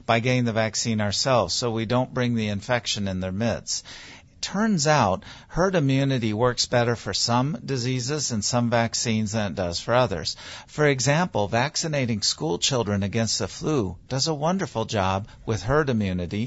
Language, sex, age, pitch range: English, male, 50-69, 95-125 Hz